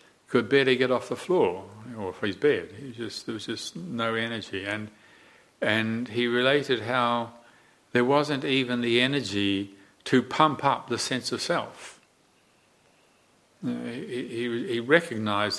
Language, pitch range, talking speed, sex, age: English, 105-140 Hz, 165 wpm, male, 60-79